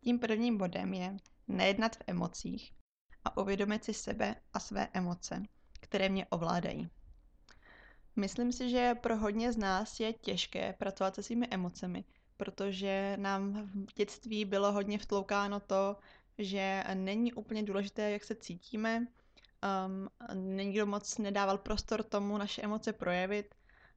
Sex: female